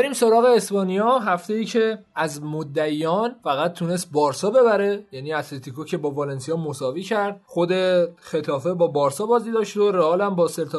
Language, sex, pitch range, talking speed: Persian, male, 170-210 Hz, 155 wpm